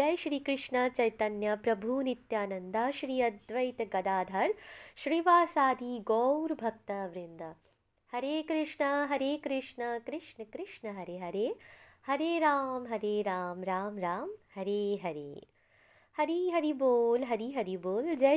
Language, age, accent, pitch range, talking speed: Hindi, 20-39, native, 200-275 Hz, 120 wpm